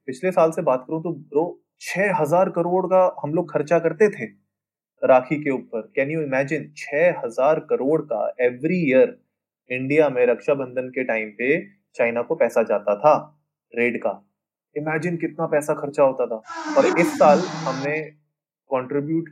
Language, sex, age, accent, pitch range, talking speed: Hindi, male, 20-39, native, 125-160 Hz, 150 wpm